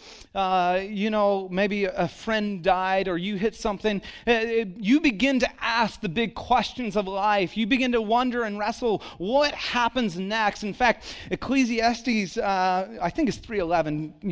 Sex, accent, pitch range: male, American, 155-235 Hz